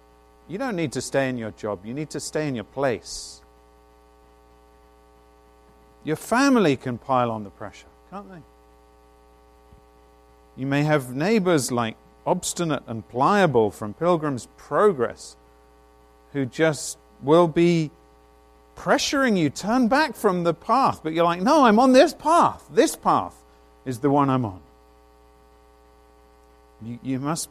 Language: English